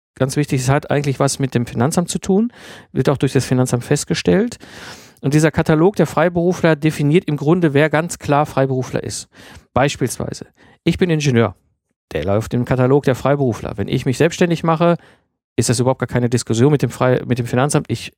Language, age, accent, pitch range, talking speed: German, 50-69, German, 130-165 Hz, 185 wpm